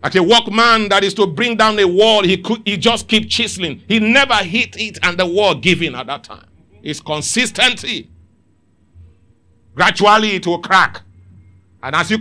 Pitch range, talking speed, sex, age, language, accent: 125-195 Hz, 175 wpm, male, 50-69, English, Nigerian